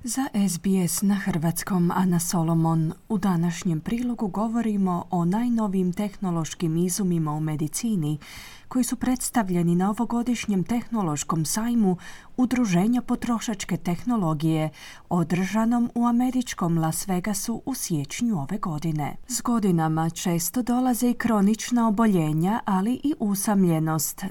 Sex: female